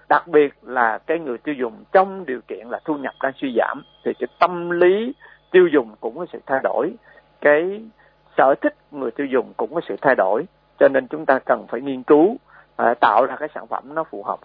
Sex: male